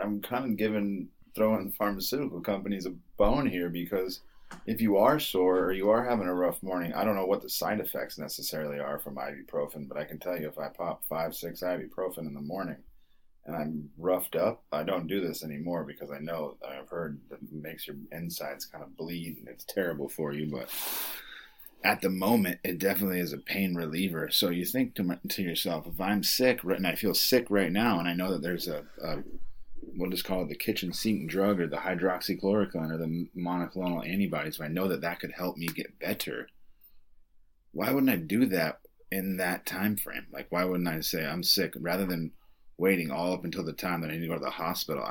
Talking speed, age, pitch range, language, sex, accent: 215 wpm, 30-49, 80-100 Hz, English, male, American